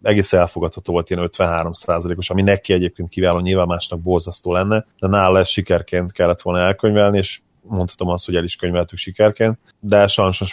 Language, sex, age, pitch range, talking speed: Hungarian, male, 30-49, 90-100 Hz, 170 wpm